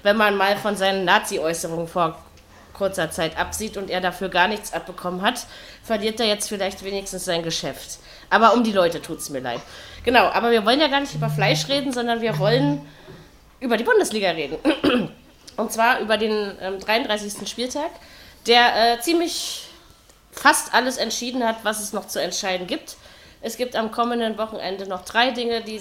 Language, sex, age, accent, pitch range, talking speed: German, female, 30-49, German, 200-250 Hz, 180 wpm